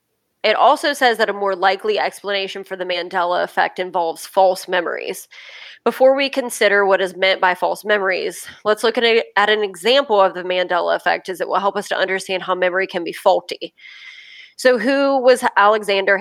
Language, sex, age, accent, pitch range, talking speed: English, female, 20-39, American, 185-220 Hz, 185 wpm